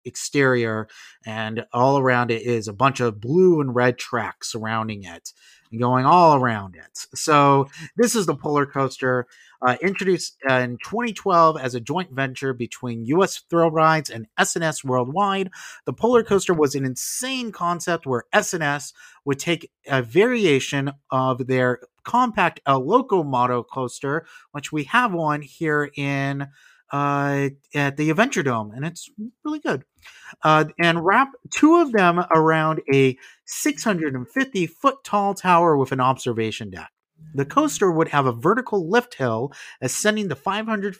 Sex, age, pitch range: male, 30-49, 130-190 Hz